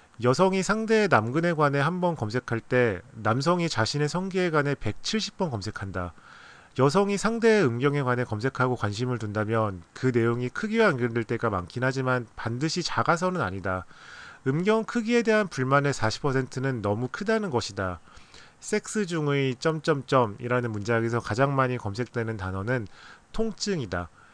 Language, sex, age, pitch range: Korean, male, 30-49, 110-160 Hz